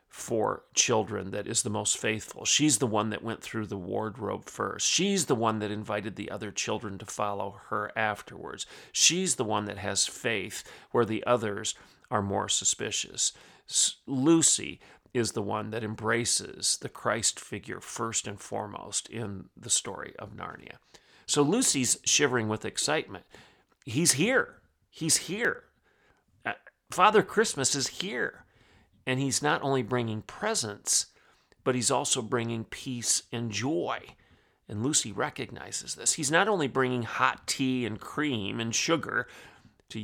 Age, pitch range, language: 40-59, 110-130 Hz, English